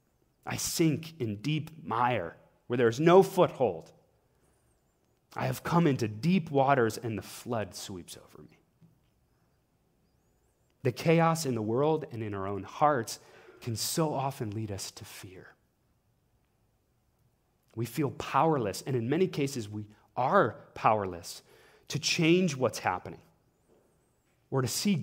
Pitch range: 110-180 Hz